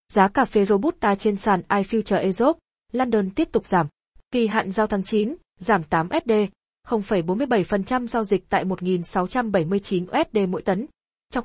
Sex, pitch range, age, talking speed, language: female, 190-230 Hz, 20-39, 150 wpm, Vietnamese